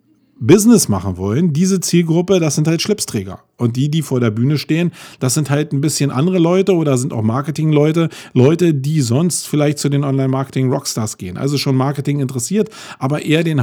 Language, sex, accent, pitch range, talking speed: German, male, German, 130-165 Hz, 195 wpm